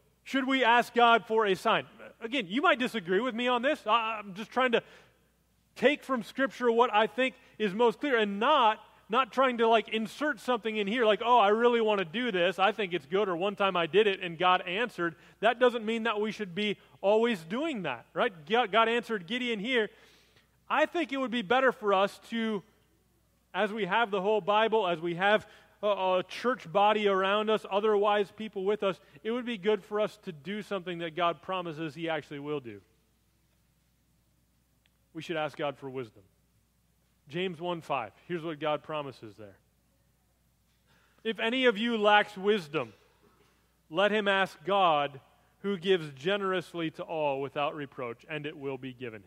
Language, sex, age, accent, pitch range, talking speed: English, male, 30-49, American, 165-230 Hz, 185 wpm